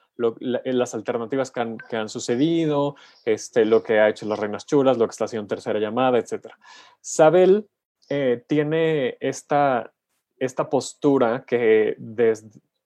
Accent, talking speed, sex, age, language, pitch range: Mexican, 145 wpm, male, 30-49, Spanish, 120-150 Hz